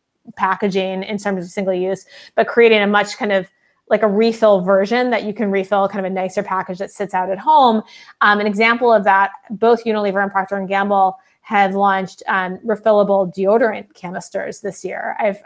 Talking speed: 195 wpm